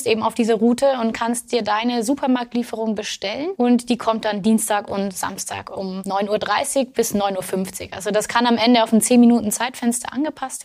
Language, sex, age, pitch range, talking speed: German, female, 20-39, 210-245 Hz, 180 wpm